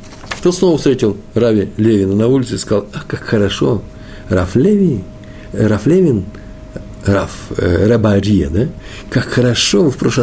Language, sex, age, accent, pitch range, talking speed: Russian, male, 50-69, native, 100-130 Hz, 140 wpm